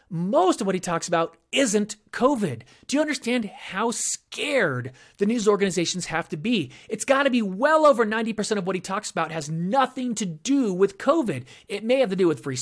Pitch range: 165-250 Hz